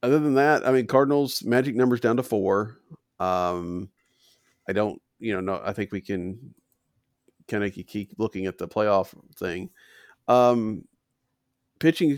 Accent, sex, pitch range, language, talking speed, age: American, male, 100-125 Hz, English, 155 wpm, 40-59